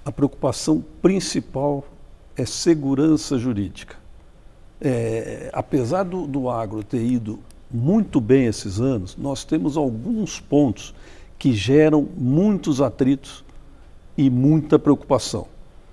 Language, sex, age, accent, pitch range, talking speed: English, male, 60-79, Brazilian, 135-175 Hz, 105 wpm